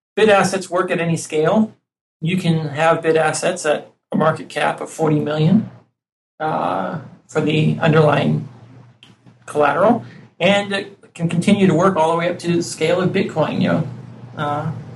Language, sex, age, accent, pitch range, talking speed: English, male, 40-59, American, 150-175 Hz, 165 wpm